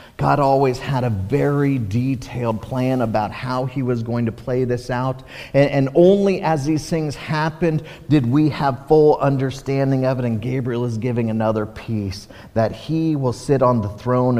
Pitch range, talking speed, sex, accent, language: 115-155 Hz, 180 wpm, male, American, English